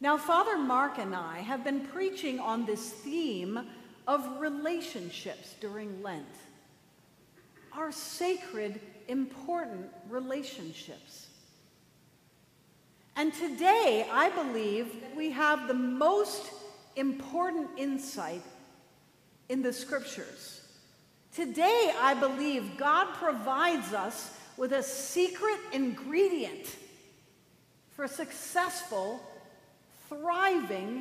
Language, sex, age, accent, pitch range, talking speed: English, female, 50-69, American, 225-315 Hz, 85 wpm